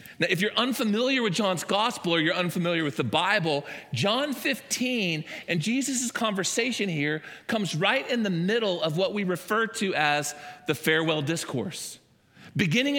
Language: English